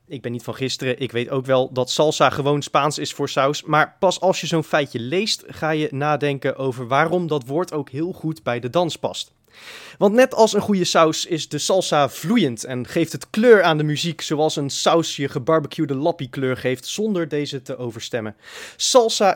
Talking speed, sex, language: 205 wpm, male, Dutch